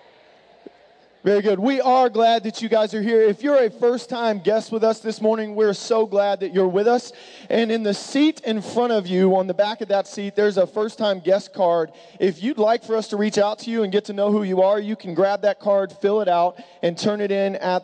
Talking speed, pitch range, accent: 250 wpm, 175-220 Hz, American